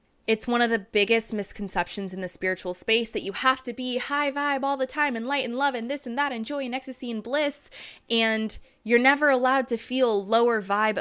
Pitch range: 215-265 Hz